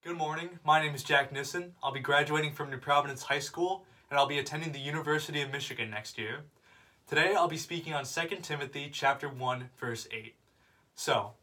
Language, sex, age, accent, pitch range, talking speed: English, male, 20-39, American, 130-165 Hz, 195 wpm